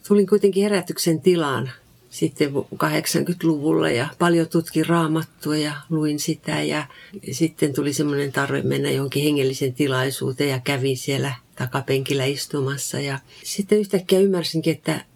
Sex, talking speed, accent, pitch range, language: female, 125 wpm, native, 140-170 Hz, Finnish